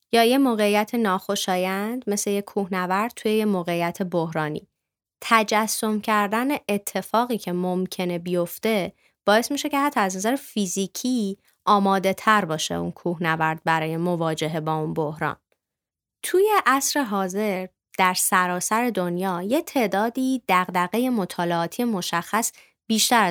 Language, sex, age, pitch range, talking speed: Persian, female, 20-39, 170-220 Hz, 120 wpm